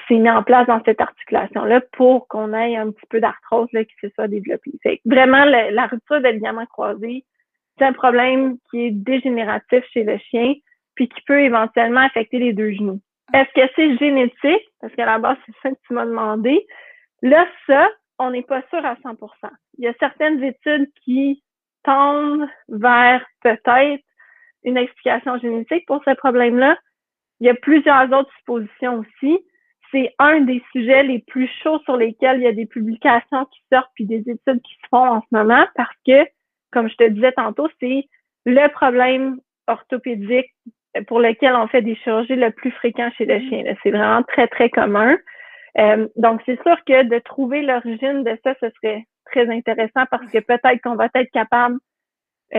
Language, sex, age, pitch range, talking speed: French, female, 30-49, 230-270 Hz, 185 wpm